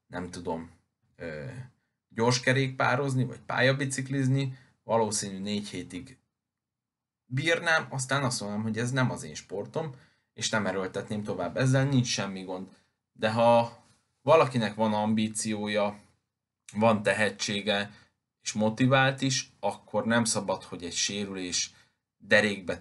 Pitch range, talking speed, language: 95-125 Hz, 115 wpm, Hungarian